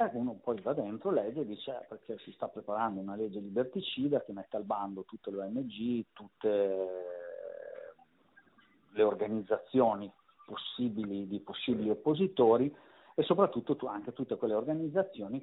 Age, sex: 50-69, male